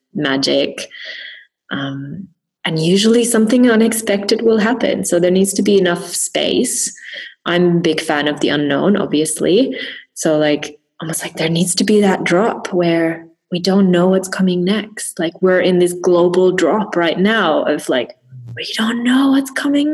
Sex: female